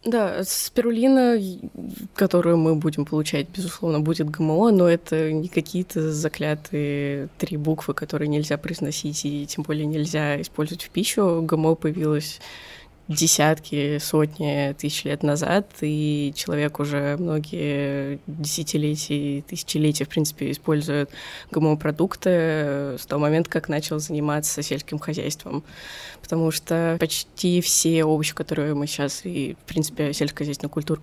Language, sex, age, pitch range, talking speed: Russian, female, 20-39, 145-165 Hz, 130 wpm